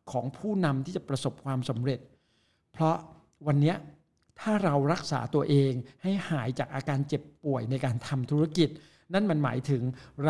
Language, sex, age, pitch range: Thai, male, 60-79, 135-175 Hz